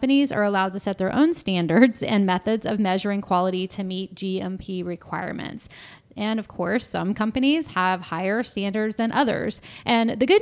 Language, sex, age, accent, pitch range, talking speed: English, female, 20-39, American, 185-215 Hz, 165 wpm